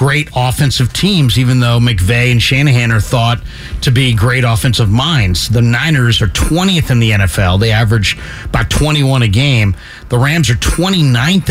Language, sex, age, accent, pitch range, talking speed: English, male, 50-69, American, 115-150 Hz, 165 wpm